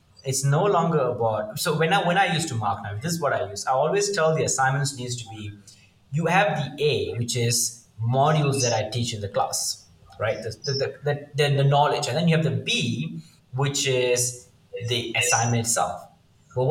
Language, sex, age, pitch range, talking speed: English, male, 20-39, 125-160 Hz, 210 wpm